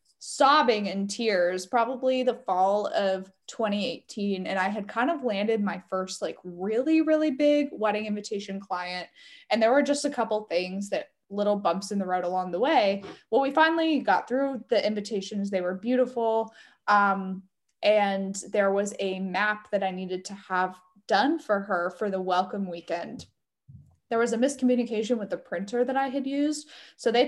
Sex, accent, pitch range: female, American, 190-250 Hz